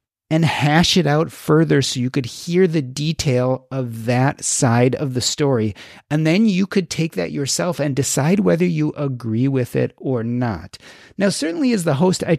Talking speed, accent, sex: 190 wpm, American, male